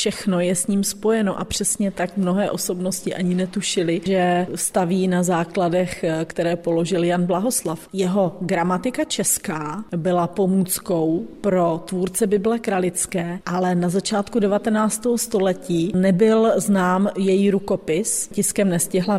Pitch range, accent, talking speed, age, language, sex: 180-205 Hz, native, 125 wpm, 30-49, Czech, female